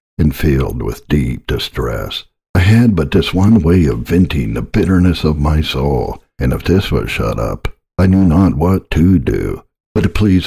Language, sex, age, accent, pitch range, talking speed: English, male, 60-79, American, 75-95 Hz, 185 wpm